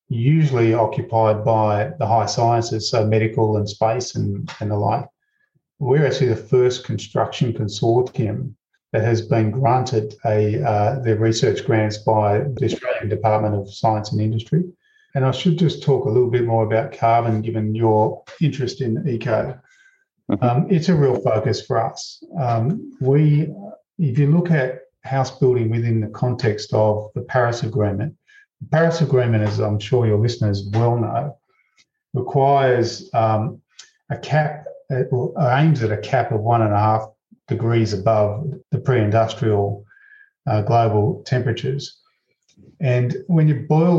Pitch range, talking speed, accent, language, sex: 110-140 Hz, 145 wpm, Australian, English, male